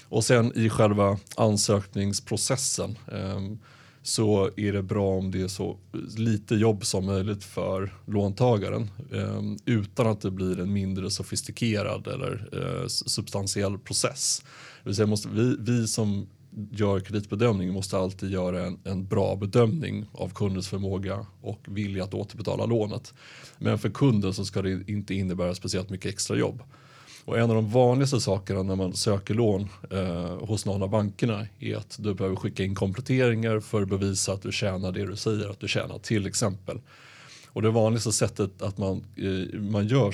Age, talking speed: 30-49, 170 wpm